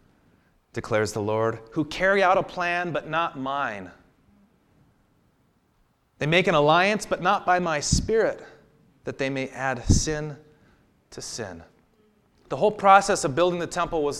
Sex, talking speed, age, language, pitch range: male, 150 wpm, 30-49, English, 115-155 Hz